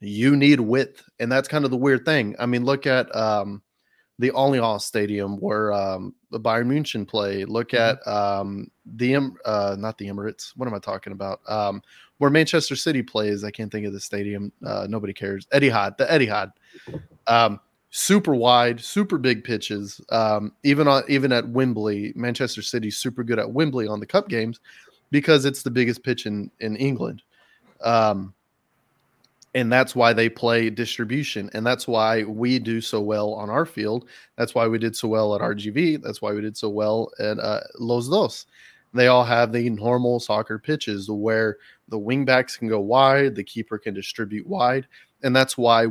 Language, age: English, 30-49